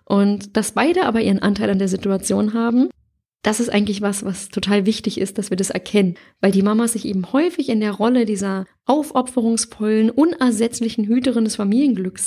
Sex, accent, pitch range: female, German, 195-230 Hz